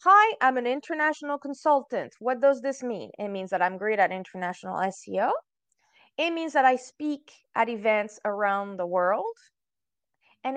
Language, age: English, 20-39